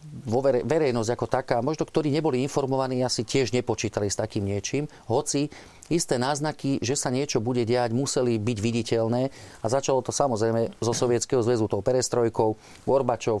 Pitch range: 115-140 Hz